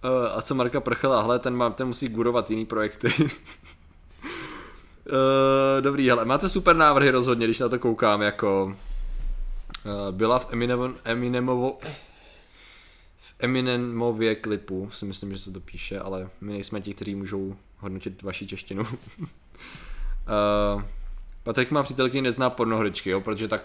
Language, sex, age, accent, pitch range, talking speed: Czech, male, 20-39, native, 95-125 Hz, 135 wpm